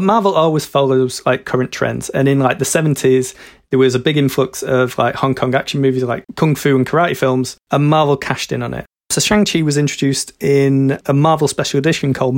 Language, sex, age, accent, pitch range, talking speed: English, male, 30-49, British, 130-145 Hz, 215 wpm